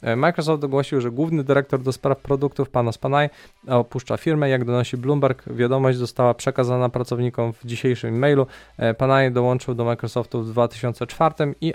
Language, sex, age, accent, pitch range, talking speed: Polish, male, 20-39, native, 120-140 Hz, 150 wpm